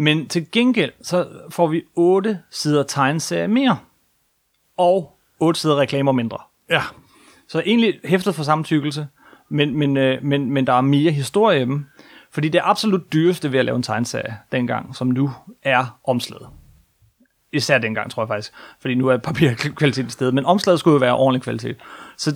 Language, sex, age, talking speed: Danish, male, 30-49, 175 wpm